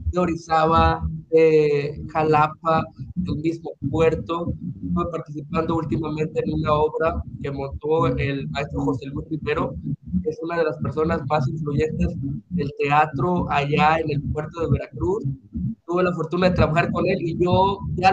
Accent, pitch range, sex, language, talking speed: Mexican, 140-170 Hz, male, Spanish, 150 wpm